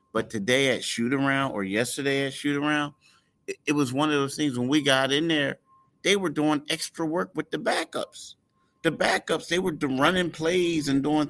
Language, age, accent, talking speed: English, 30-49, American, 195 wpm